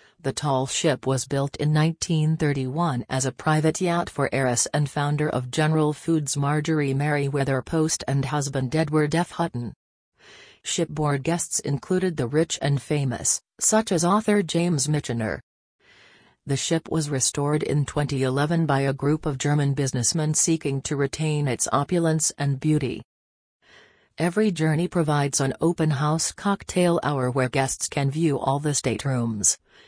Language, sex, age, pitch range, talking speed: English, female, 40-59, 135-160 Hz, 145 wpm